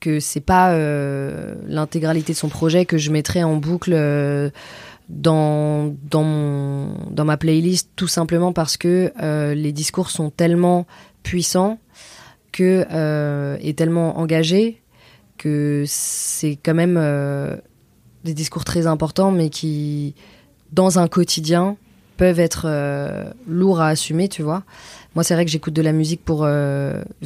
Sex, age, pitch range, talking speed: female, 20-39, 150-170 Hz, 150 wpm